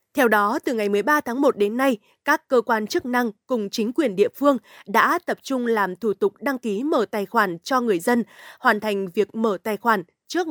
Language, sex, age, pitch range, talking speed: Vietnamese, female, 20-39, 215-265 Hz, 230 wpm